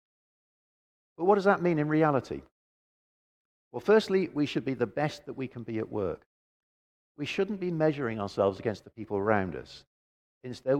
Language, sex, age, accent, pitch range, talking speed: English, male, 50-69, British, 95-150 Hz, 170 wpm